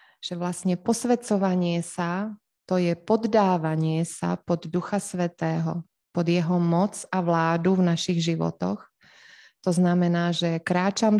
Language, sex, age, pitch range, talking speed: Slovak, female, 20-39, 170-200 Hz, 125 wpm